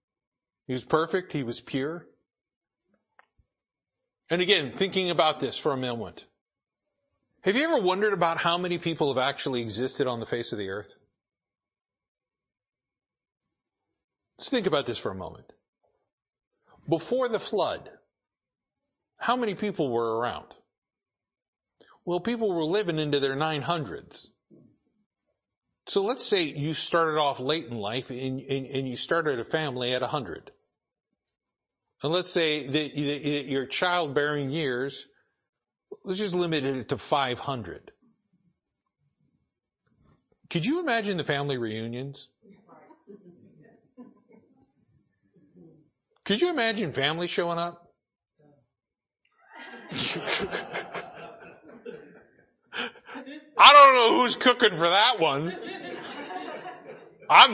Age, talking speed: 50-69, 105 wpm